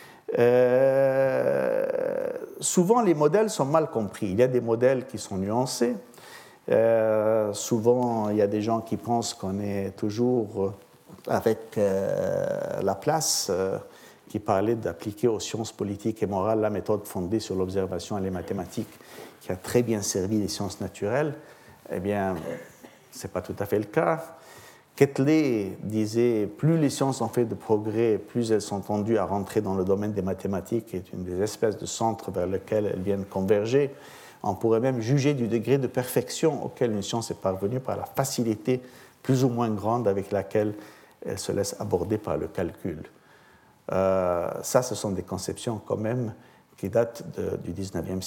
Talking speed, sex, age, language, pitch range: 175 wpm, male, 50-69, French, 100-125 Hz